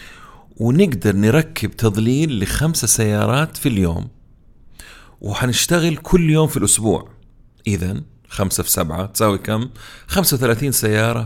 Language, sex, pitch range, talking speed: Arabic, male, 95-125 Hz, 110 wpm